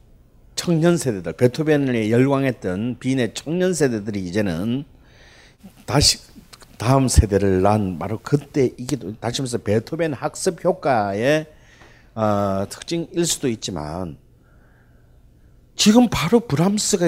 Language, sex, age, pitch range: Korean, male, 40-59, 130-205 Hz